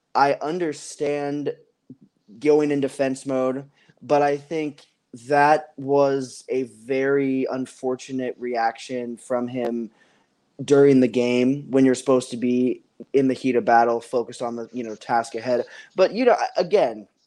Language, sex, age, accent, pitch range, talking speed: English, male, 20-39, American, 130-150 Hz, 145 wpm